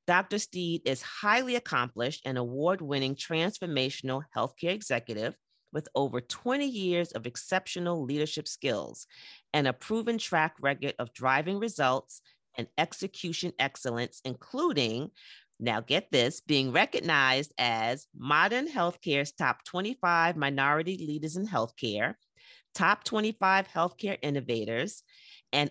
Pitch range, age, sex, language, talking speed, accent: 135-190 Hz, 40-59, female, English, 115 wpm, American